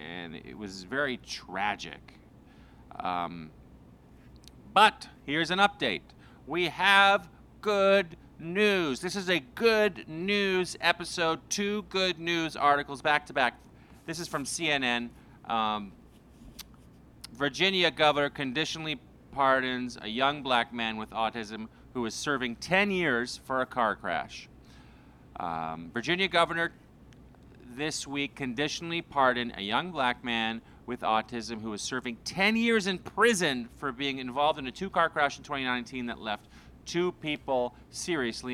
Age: 40-59